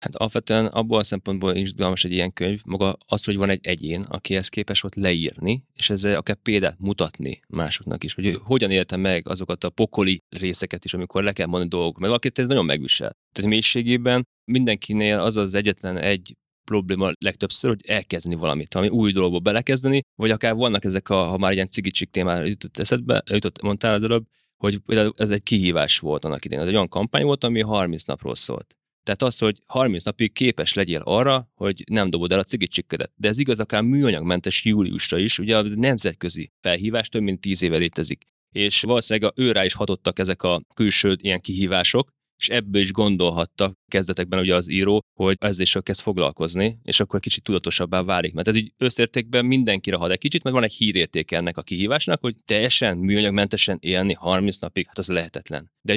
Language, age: Hungarian, 30-49